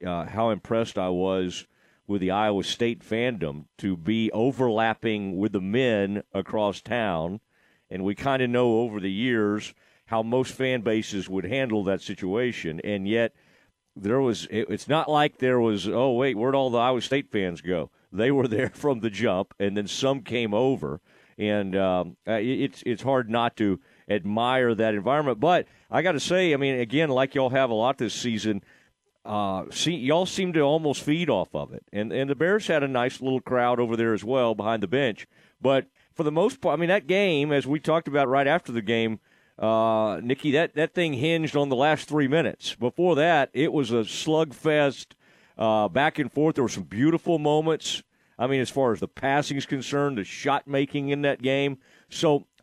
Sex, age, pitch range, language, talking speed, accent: male, 40-59, 110-140 Hz, English, 195 wpm, American